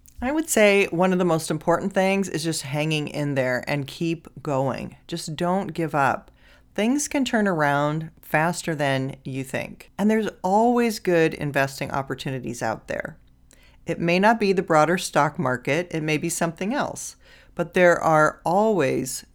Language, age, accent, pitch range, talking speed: English, 40-59, American, 140-180 Hz, 165 wpm